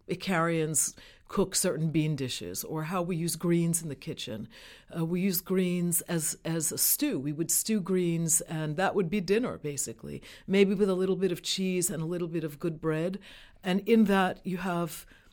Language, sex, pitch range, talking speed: English, female, 160-205 Hz, 195 wpm